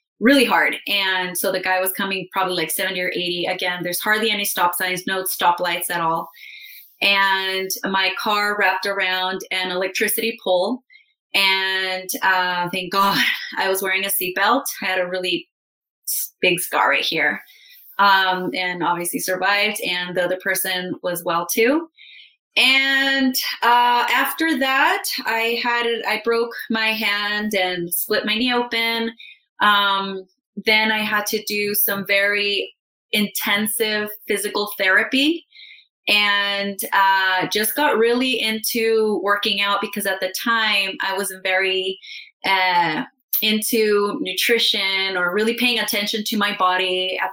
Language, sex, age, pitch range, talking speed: English, female, 20-39, 185-225 Hz, 140 wpm